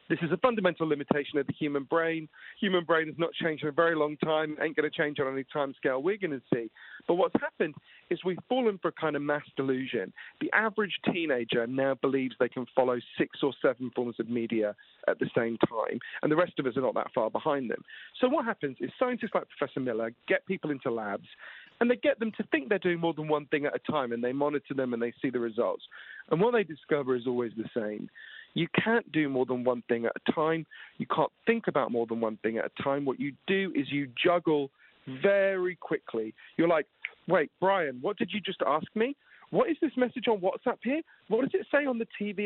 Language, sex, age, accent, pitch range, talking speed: English, male, 40-59, British, 140-220 Hz, 235 wpm